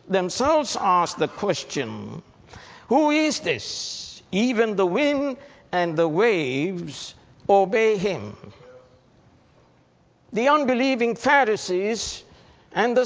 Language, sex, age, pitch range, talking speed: English, male, 60-79, 155-250 Hz, 90 wpm